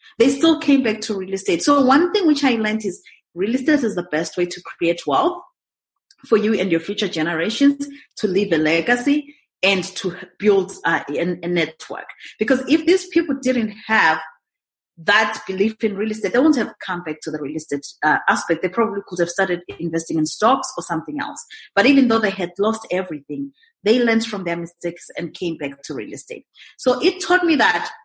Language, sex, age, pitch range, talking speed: English, female, 30-49, 185-275 Hz, 205 wpm